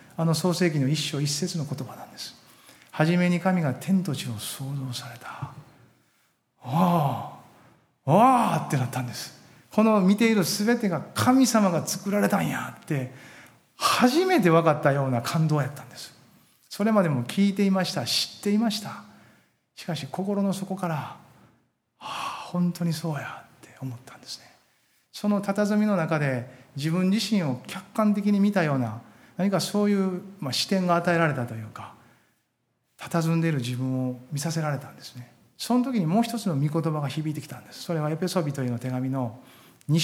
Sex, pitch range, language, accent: male, 130-185 Hz, Japanese, native